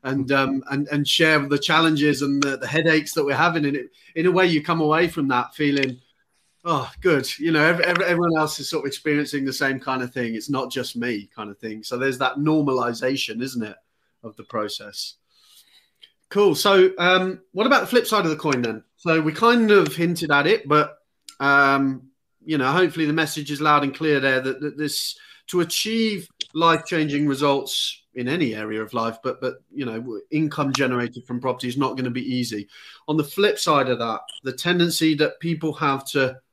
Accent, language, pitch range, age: British, English, 130-160 Hz, 30-49